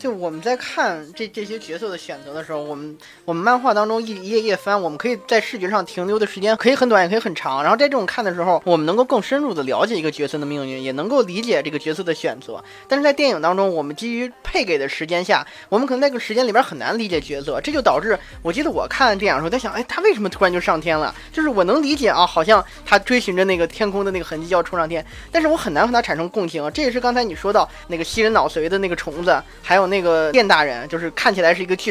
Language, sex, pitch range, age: Chinese, male, 165-245 Hz, 20-39